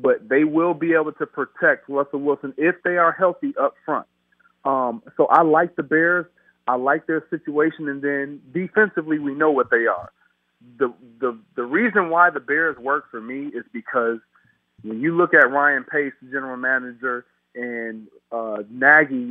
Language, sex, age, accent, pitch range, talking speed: English, male, 40-59, American, 140-225 Hz, 175 wpm